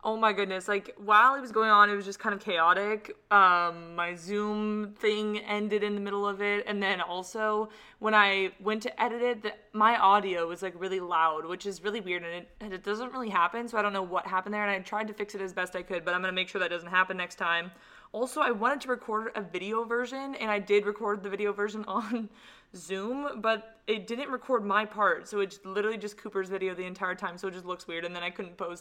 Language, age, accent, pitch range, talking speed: English, 20-39, American, 190-230 Hz, 250 wpm